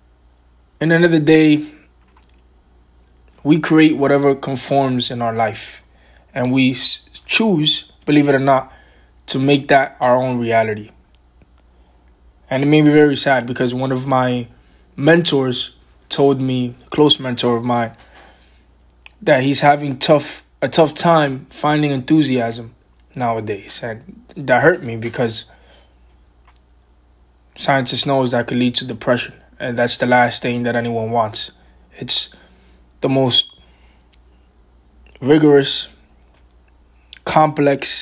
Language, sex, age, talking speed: English, male, 20-39, 125 wpm